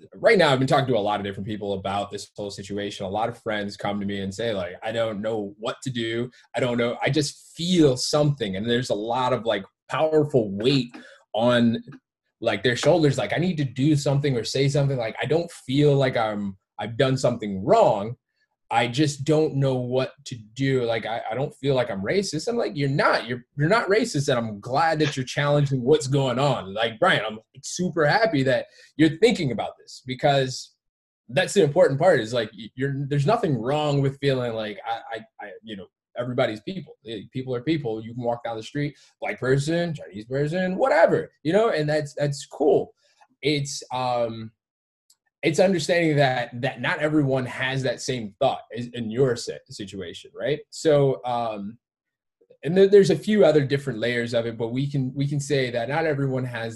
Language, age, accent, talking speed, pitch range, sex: English, 20-39, American, 200 wpm, 115-150 Hz, male